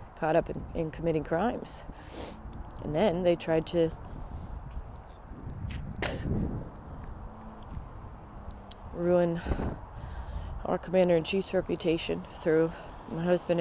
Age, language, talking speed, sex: 30-49, English, 90 wpm, female